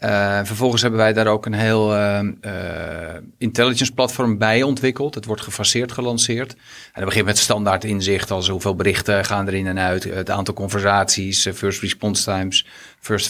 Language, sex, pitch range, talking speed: Dutch, male, 105-120 Hz, 165 wpm